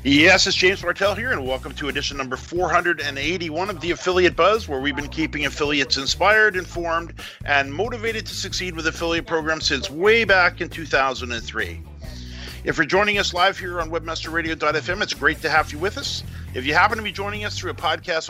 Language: English